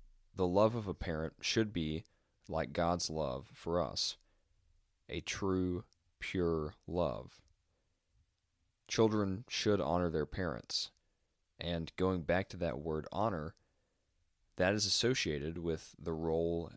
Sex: male